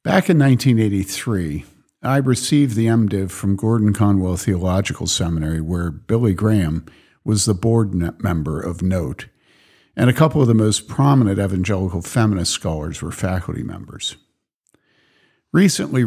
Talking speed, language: 125 wpm, English